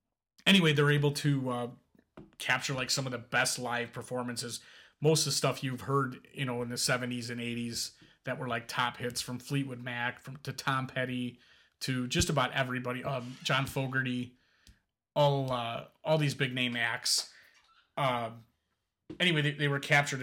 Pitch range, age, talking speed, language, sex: 125-140 Hz, 30-49, 170 wpm, English, male